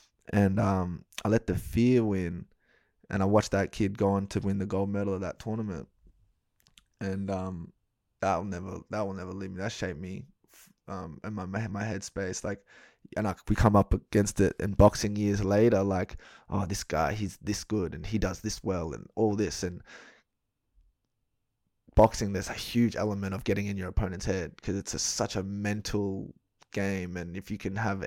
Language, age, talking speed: English, 20-39, 195 wpm